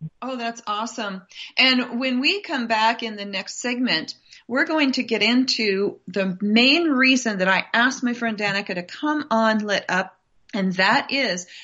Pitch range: 190-250 Hz